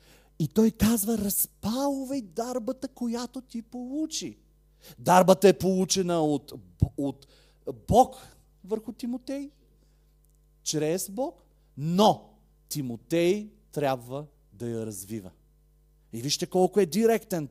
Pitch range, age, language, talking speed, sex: 150-210 Hz, 40-59, Bulgarian, 100 wpm, male